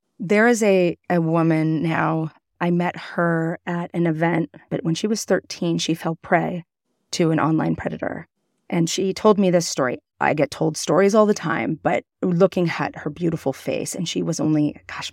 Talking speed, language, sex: 190 wpm, English, female